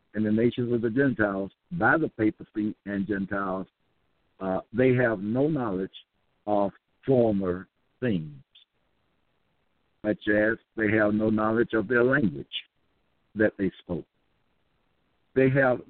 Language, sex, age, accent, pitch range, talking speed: English, male, 60-79, American, 110-135 Hz, 125 wpm